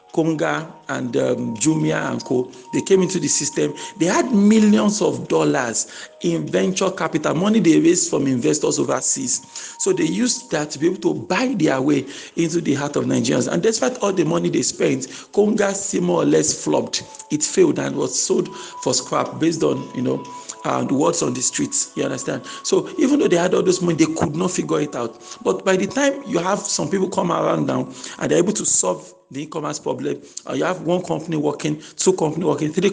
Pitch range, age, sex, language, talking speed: 155-235 Hz, 40-59, male, English, 210 wpm